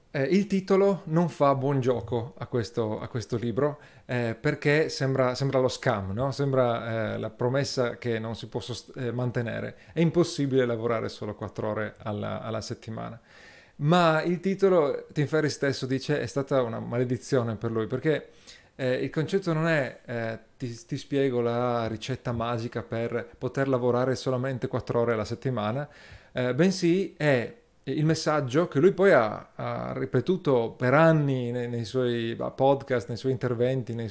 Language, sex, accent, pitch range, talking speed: Italian, male, native, 115-150 Hz, 160 wpm